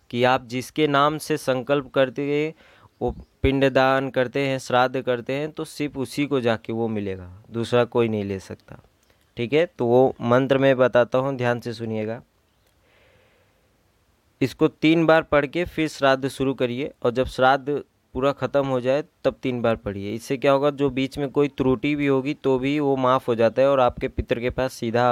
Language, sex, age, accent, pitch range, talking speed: Hindi, male, 20-39, native, 115-135 Hz, 195 wpm